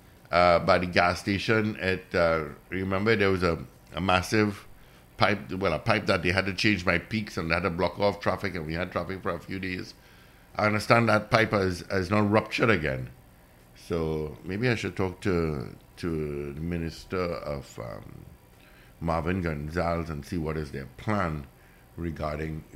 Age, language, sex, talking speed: 60-79, English, male, 180 wpm